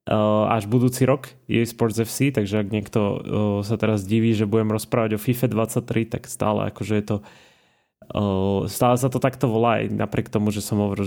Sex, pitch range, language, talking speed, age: male, 110-135 Hz, Slovak, 185 wpm, 20-39